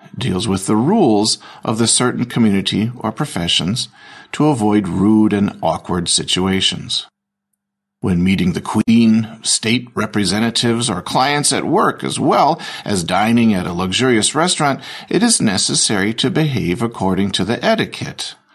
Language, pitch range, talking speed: Slovak, 105-165 Hz, 140 wpm